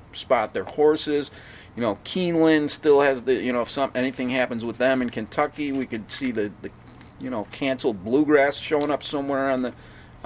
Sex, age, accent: male, 40-59, American